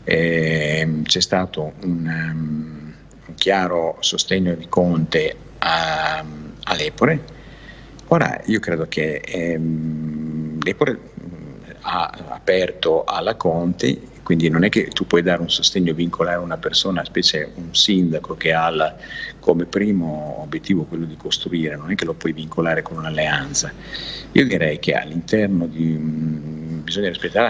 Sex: male